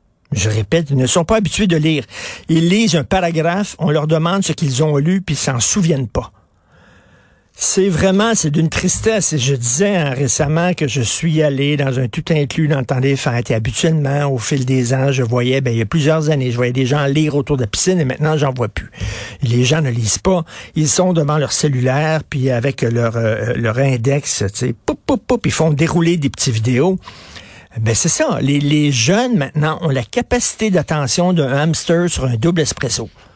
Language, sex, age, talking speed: French, male, 60-79, 210 wpm